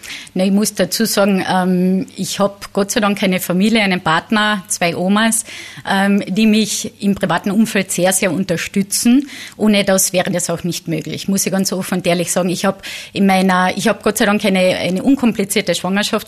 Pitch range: 185-215 Hz